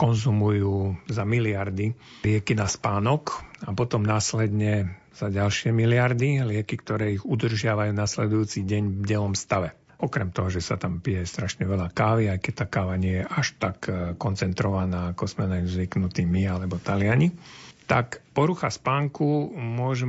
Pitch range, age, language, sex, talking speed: 100-125 Hz, 50-69, Slovak, male, 150 wpm